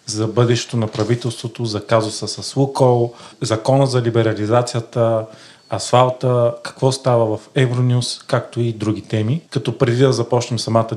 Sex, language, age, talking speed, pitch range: male, Bulgarian, 40-59, 135 wpm, 110-130 Hz